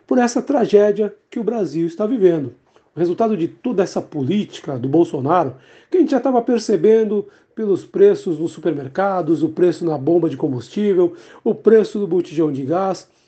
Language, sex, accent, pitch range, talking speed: Portuguese, male, Brazilian, 170-230 Hz, 170 wpm